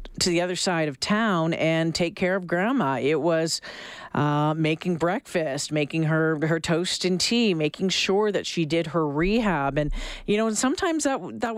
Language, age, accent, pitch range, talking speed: English, 40-59, American, 165-220 Hz, 185 wpm